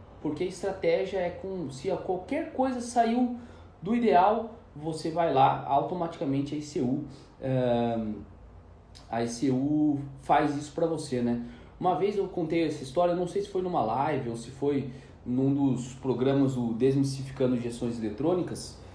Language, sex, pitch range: Portuguese, male, 125-180 Hz